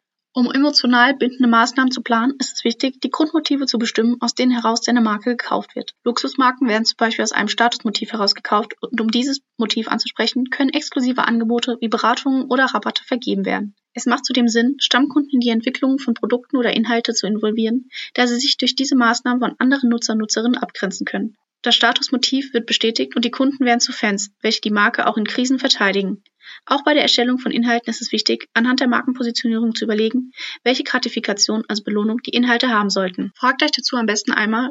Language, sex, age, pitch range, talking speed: German, female, 10-29, 225-260 Hz, 195 wpm